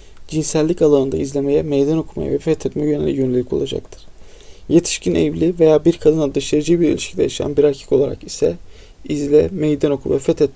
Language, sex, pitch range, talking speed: Turkish, male, 135-155 Hz, 155 wpm